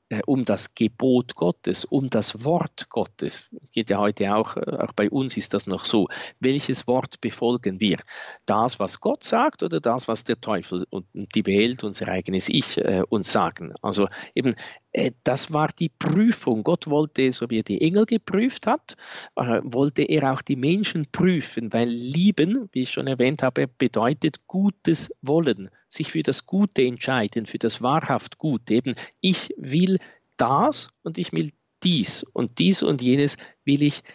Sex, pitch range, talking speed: male, 115-165 Hz, 165 wpm